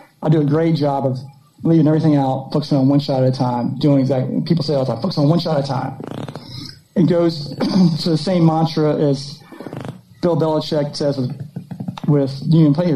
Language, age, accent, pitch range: English, 30-49, American, 145-175 Hz